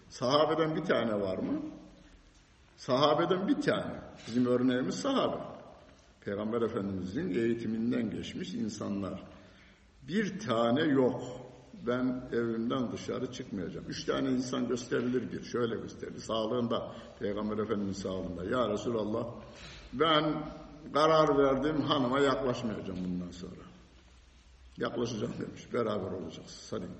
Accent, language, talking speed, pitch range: native, Turkish, 105 wpm, 95-145 Hz